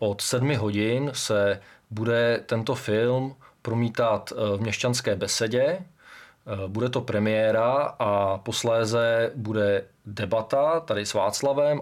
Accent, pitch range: native, 110-130 Hz